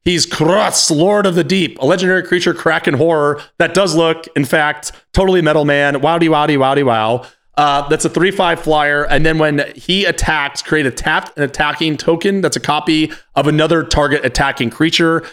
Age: 30-49